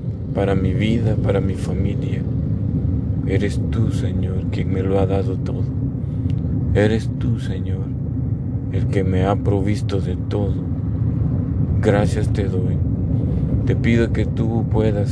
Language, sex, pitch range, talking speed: Spanish, male, 100-125 Hz, 130 wpm